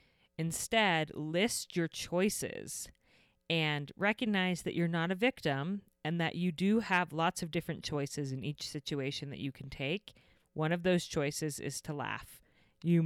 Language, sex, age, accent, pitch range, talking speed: English, female, 30-49, American, 145-185 Hz, 160 wpm